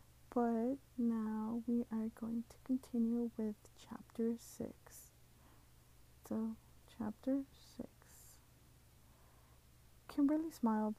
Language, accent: English, American